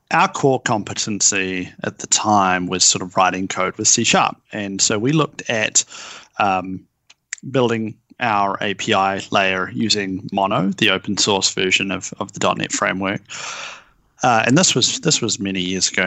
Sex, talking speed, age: male, 160 wpm, 30-49